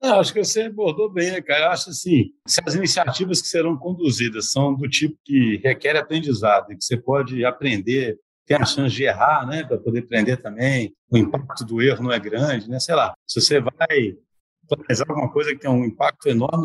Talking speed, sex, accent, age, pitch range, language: 215 wpm, male, Brazilian, 60-79, 125-160 Hz, Portuguese